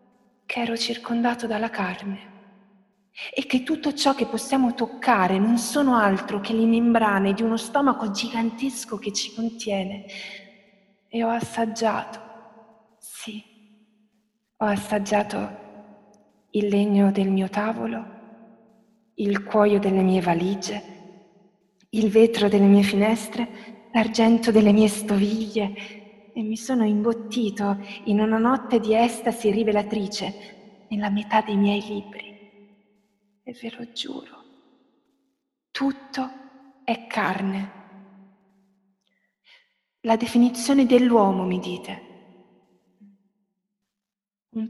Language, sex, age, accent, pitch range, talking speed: Italian, female, 20-39, native, 200-235 Hz, 105 wpm